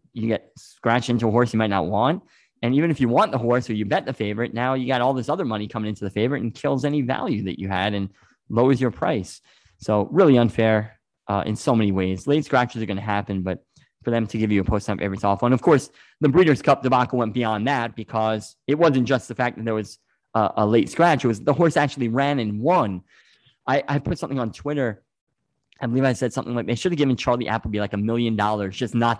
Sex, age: male, 20-39